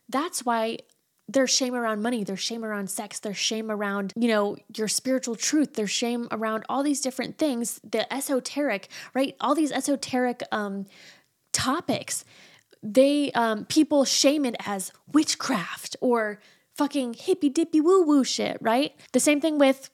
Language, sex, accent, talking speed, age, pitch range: English, female, American, 155 wpm, 20-39, 215-270 Hz